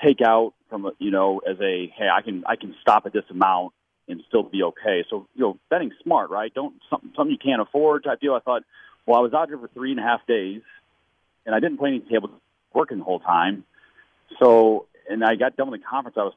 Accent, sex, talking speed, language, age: American, male, 245 wpm, English, 40-59